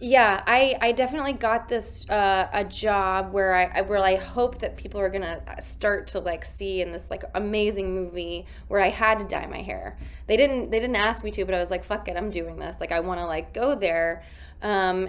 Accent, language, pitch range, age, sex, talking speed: American, English, 185-225 Hz, 20-39, female, 230 wpm